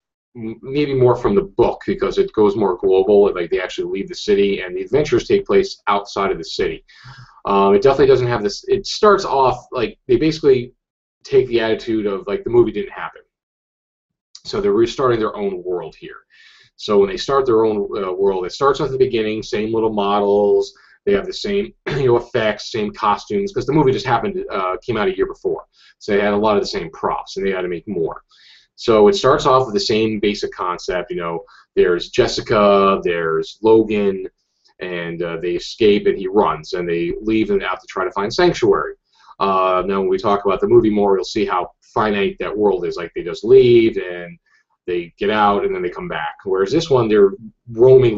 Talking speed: 210 wpm